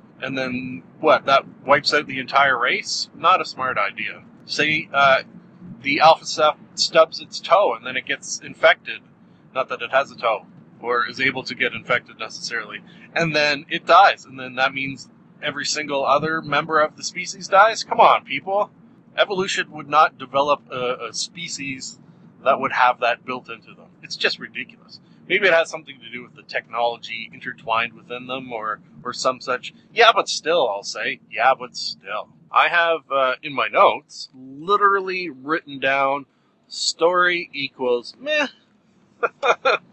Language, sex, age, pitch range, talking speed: English, male, 30-49, 130-180 Hz, 165 wpm